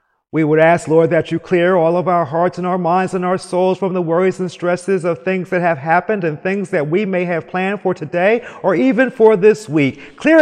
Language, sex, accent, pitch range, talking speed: English, male, American, 145-220 Hz, 240 wpm